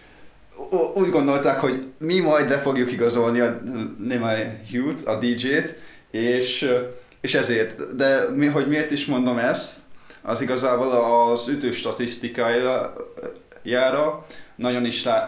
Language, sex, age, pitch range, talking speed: Hungarian, male, 20-39, 110-130 Hz, 105 wpm